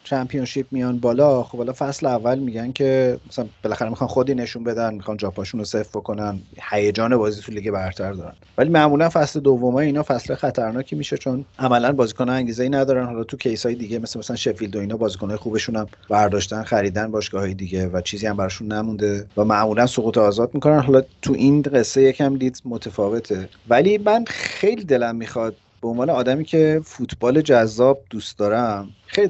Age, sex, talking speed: 30-49, male, 175 wpm